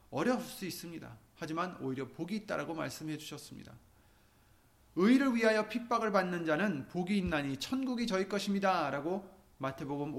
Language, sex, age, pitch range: Korean, male, 30-49, 125-190 Hz